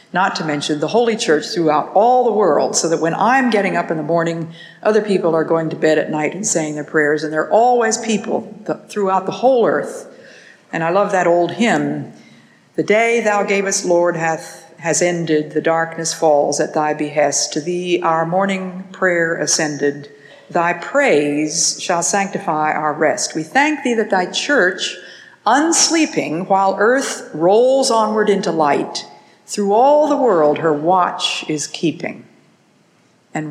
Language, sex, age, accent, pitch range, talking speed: English, female, 50-69, American, 155-215 Hz, 170 wpm